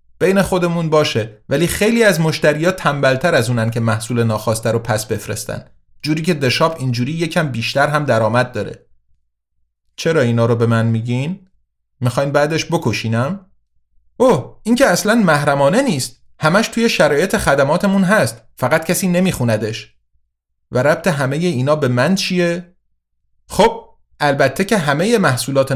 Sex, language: male, Persian